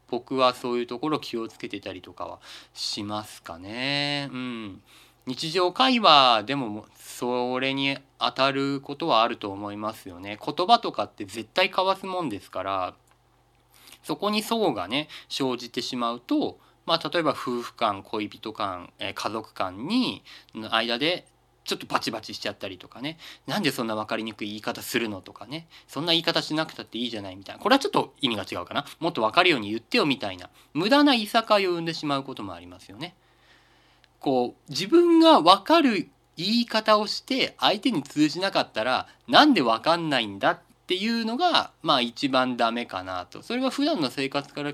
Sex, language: male, Japanese